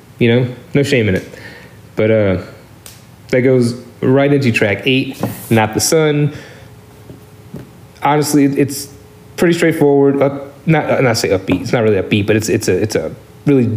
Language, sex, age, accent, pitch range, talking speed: English, male, 30-49, American, 105-135 Hz, 160 wpm